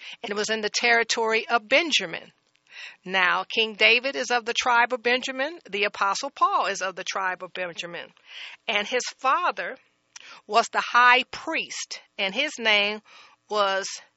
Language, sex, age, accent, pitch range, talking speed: English, female, 40-59, American, 190-235 Hz, 155 wpm